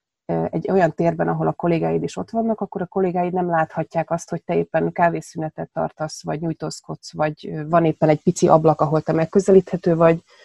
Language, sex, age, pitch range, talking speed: Hungarian, female, 30-49, 155-185 Hz, 185 wpm